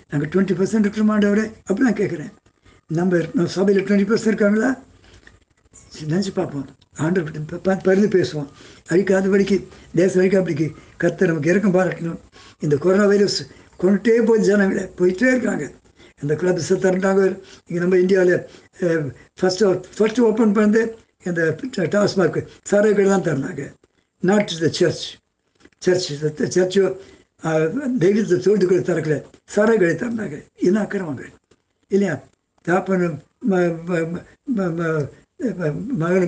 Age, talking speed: 60-79, 100 wpm